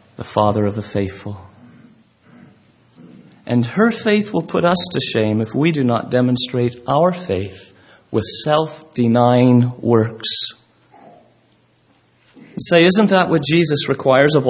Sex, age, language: male, 40-59, English